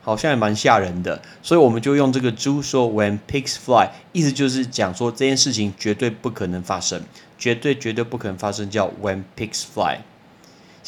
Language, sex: Chinese, male